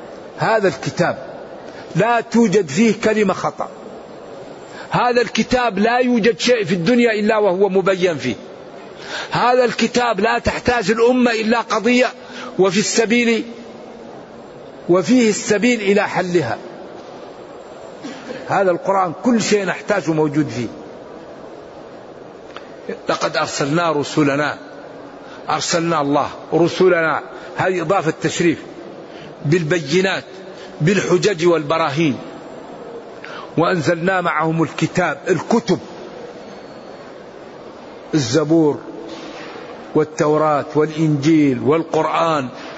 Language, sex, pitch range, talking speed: Arabic, male, 160-215 Hz, 80 wpm